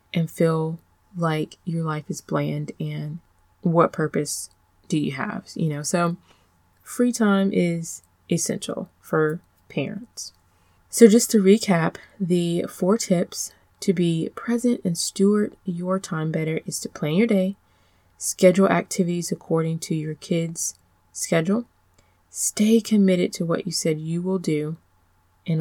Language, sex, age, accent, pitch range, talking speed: English, female, 20-39, American, 160-195 Hz, 140 wpm